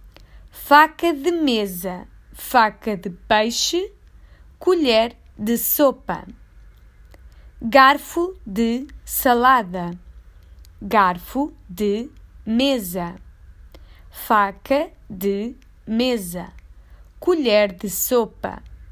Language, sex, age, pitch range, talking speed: Portuguese, female, 20-39, 180-265 Hz, 65 wpm